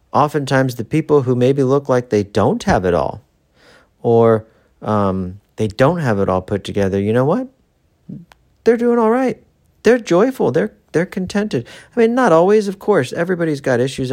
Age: 40-59